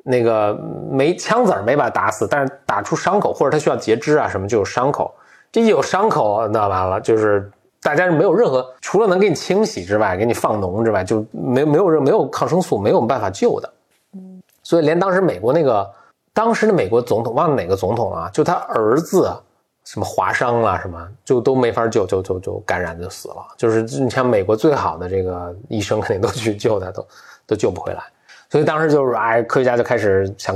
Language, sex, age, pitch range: Chinese, male, 20-39, 110-160 Hz